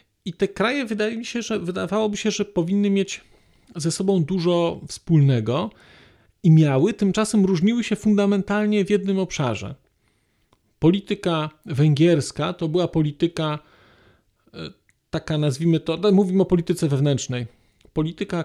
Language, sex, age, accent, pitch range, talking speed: Polish, male, 40-59, native, 145-190 Hz, 110 wpm